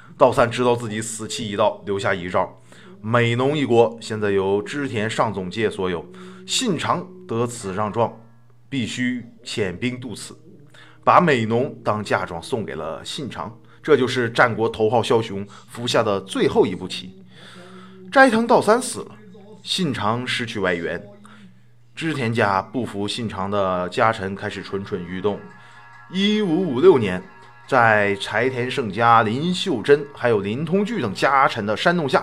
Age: 20-39